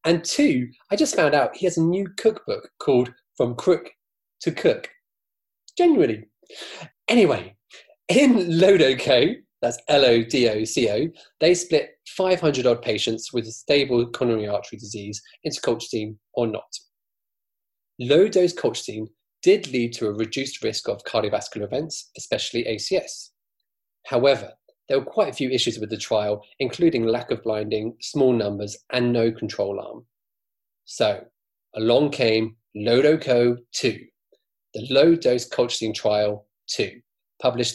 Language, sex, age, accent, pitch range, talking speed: English, male, 30-49, British, 110-160 Hz, 125 wpm